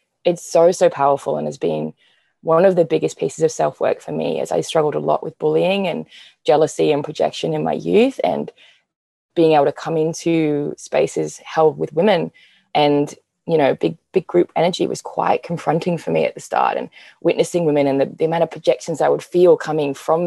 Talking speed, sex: 205 wpm, female